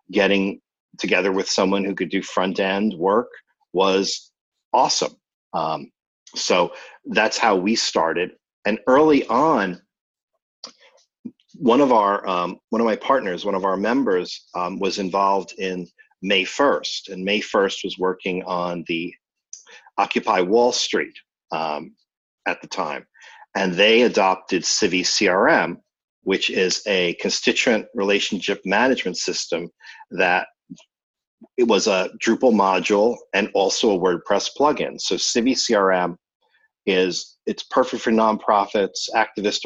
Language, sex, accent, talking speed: English, male, American, 125 wpm